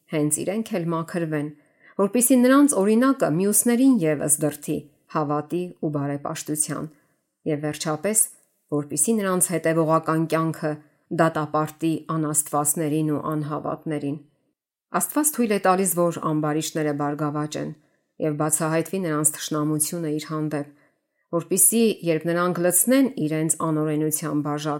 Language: English